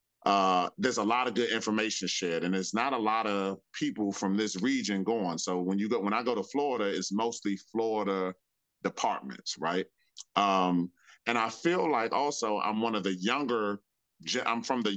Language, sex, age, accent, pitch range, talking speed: English, male, 30-49, American, 95-120 Hz, 190 wpm